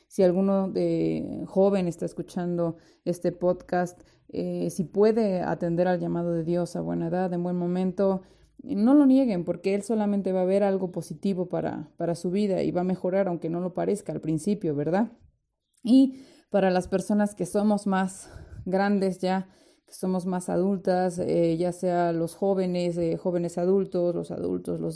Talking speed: 175 wpm